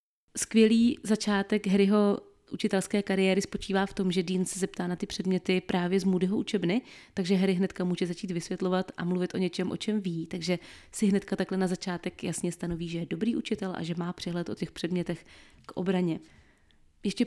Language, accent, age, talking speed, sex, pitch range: Czech, native, 20-39, 190 wpm, female, 180-210 Hz